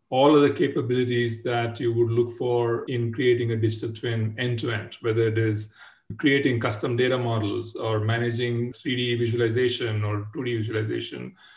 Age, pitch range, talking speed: 40-59, 115-130 Hz, 150 wpm